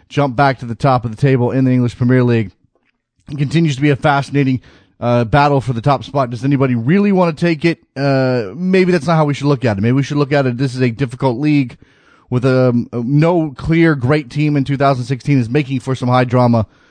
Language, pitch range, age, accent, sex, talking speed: English, 125-145 Hz, 30-49, American, male, 250 wpm